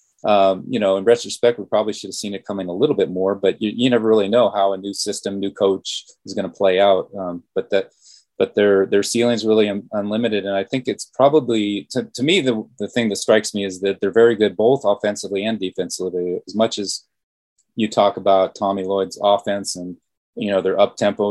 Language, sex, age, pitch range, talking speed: English, male, 30-49, 95-110 Hz, 230 wpm